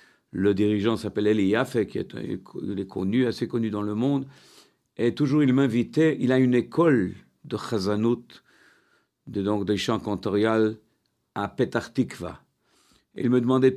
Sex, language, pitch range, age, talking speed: male, French, 110-140 Hz, 50-69, 145 wpm